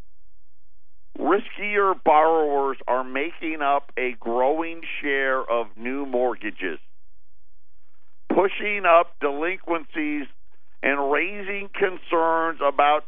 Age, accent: 50-69, American